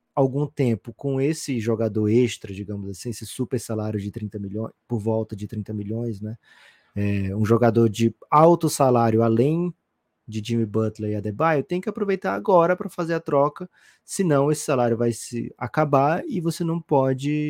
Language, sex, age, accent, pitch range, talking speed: Portuguese, male, 20-39, Brazilian, 110-140 Hz, 170 wpm